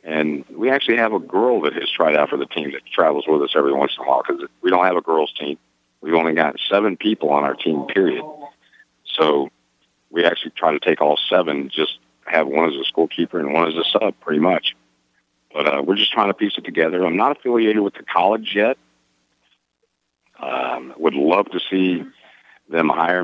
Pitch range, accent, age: 70-105 Hz, American, 50-69